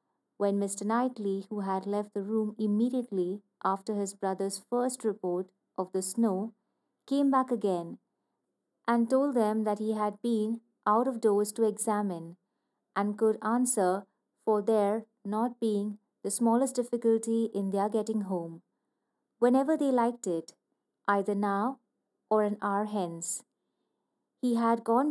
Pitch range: 200-235 Hz